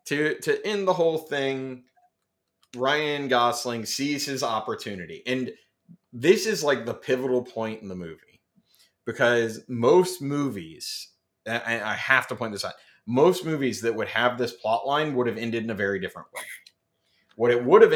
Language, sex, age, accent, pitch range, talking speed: English, male, 30-49, American, 115-135 Hz, 165 wpm